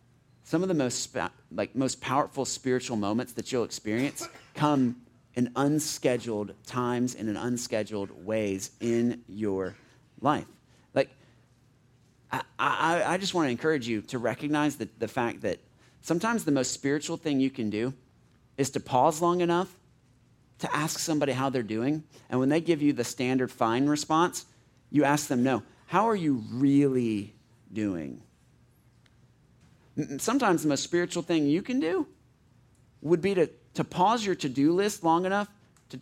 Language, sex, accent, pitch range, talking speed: English, male, American, 115-150 Hz, 155 wpm